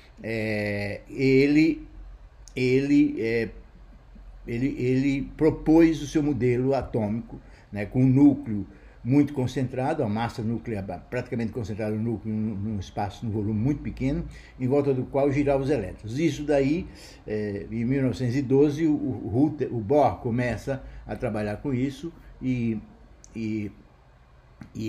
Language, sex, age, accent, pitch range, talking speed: Portuguese, male, 60-79, Brazilian, 110-145 Hz, 115 wpm